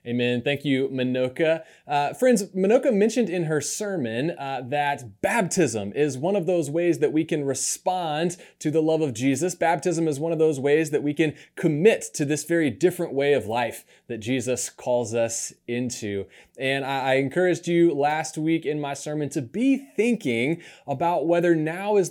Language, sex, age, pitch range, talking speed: English, male, 30-49, 135-175 Hz, 180 wpm